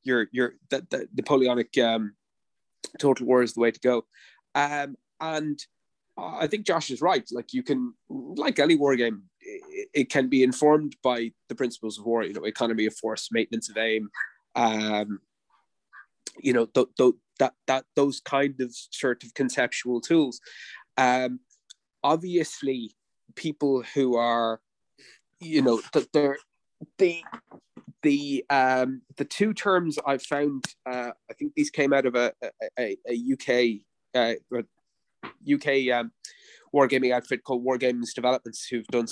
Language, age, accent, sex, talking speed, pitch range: English, 20-39, British, male, 150 wpm, 120-155 Hz